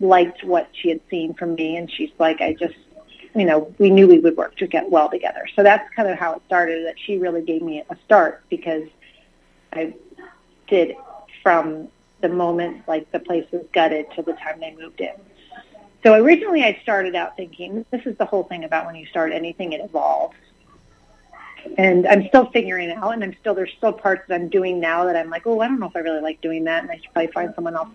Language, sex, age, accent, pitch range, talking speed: English, female, 30-49, American, 165-215 Hz, 230 wpm